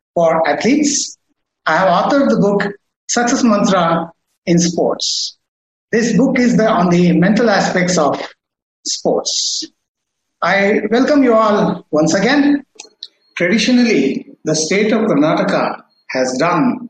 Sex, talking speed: male, 120 wpm